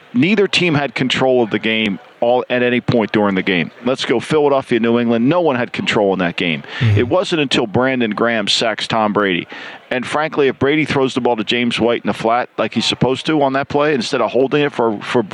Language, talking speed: English, 235 wpm